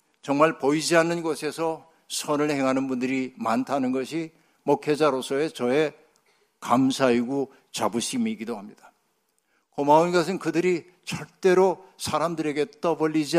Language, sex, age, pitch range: Korean, male, 60-79, 130-160 Hz